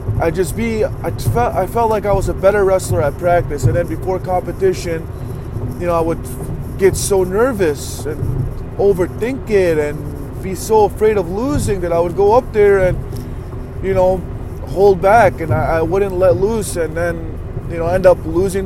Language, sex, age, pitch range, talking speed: English, male, 20-39, 125-190 Hz, 190 wpm